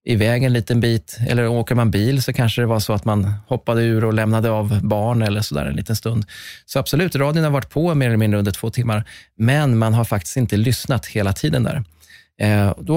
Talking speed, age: 225 wpm, 20-39